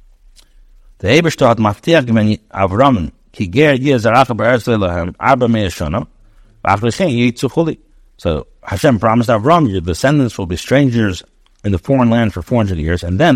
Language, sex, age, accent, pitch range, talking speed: English, male, 60-79, American, 110-145 Hz, 85 wpm